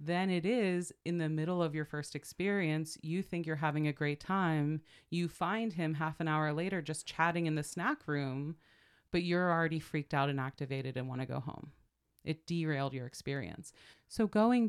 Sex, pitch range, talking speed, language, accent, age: female, 140-175 Hz, 195 wpm, English, American, 30-49